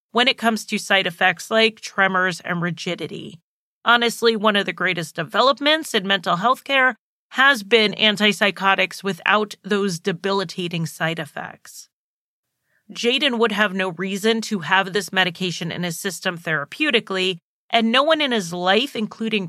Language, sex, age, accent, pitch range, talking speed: English, female, 30-49, American, 185-230 Hz, 150 wpm